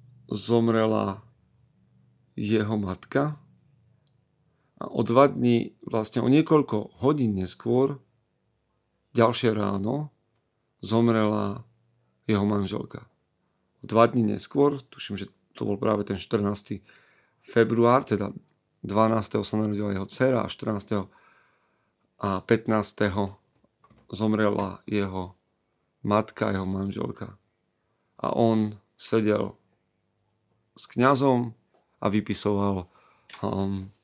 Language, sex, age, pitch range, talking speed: Slovak, male, 40-59, 100-120 Hz, 90 wpm